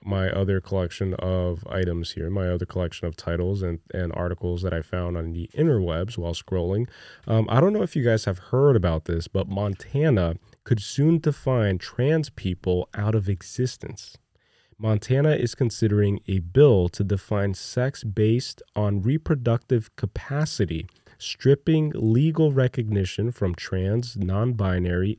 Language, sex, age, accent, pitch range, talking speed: English, male, 30-49, American, 95-125 Hz, 145 wpm